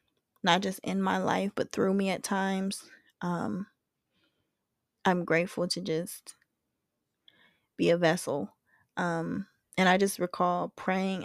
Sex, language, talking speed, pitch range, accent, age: female, English, 130 wpm, 175-200 Hz, American, 20-39